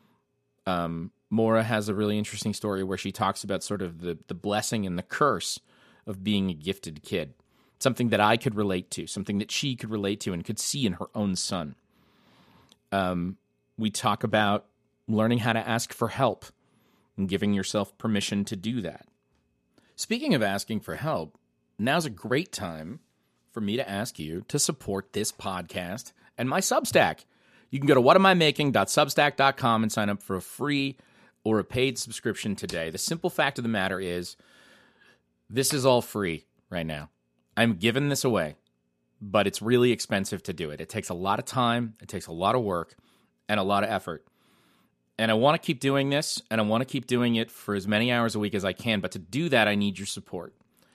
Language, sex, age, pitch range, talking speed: English, male, 40-59, 95-120 Hz, 200 wpm